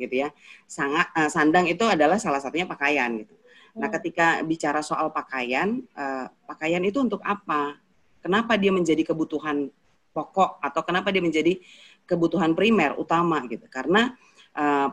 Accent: native